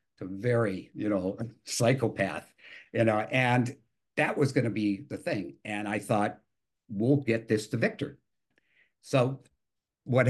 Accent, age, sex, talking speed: American, 60-79, male, 145 wpm